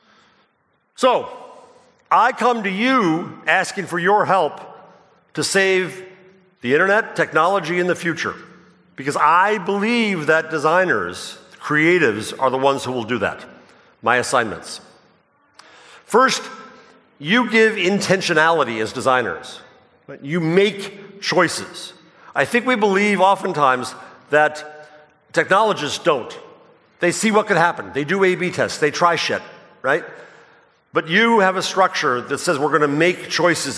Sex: male